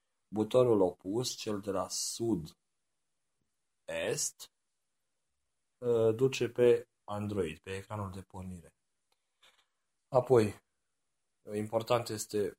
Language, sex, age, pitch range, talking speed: Romanian, male, 30-49, 90-130 Hz, 75 wpm